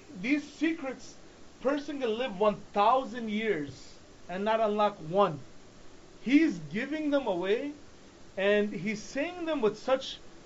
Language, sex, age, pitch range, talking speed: English, male, 30-49, 200-270 Hz, 120 wpm